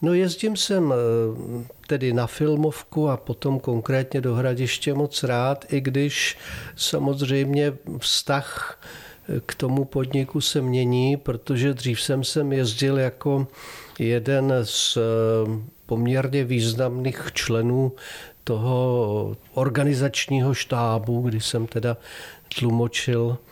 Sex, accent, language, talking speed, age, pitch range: male, native, Czech, 100 wpm, 50-69, 115-135 Hz